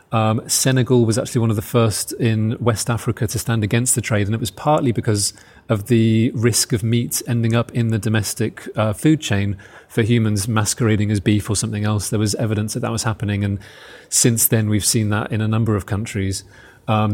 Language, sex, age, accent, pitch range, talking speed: English, male, 30-49, British, 105-120 Hz, 215 wpm